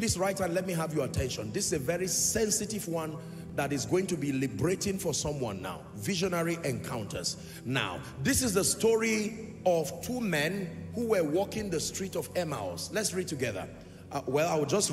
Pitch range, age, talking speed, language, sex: 165-220 Hz, 40-59, 195 wpm, English, male